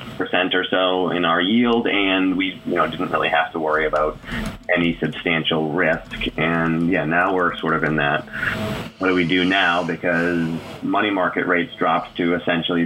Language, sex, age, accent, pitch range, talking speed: English, male, 30-49, American, 80-105 Hz, 180 wpm